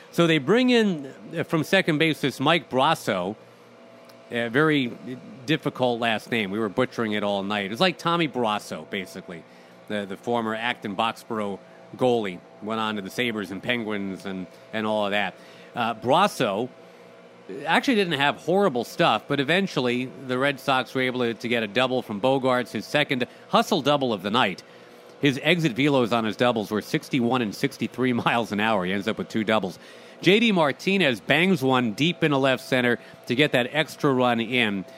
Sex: male